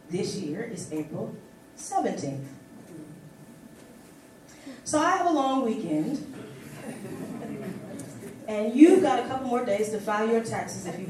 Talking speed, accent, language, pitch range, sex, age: 130 wpm, American, English, 195-290 Hz, female, 30-49